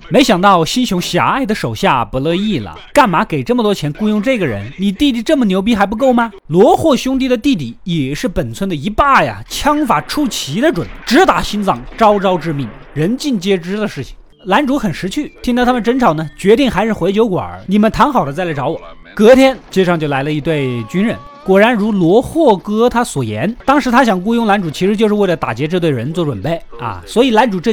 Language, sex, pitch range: Chinese, male, 165-245 Hz